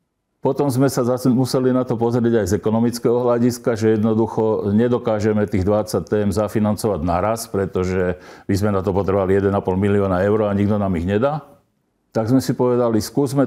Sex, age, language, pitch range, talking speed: male, 50-69, Slovak, 100-125 Hz, 175 wpm